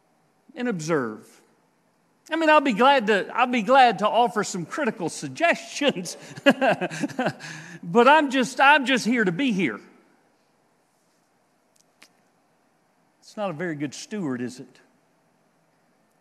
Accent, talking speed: American, 120 wpm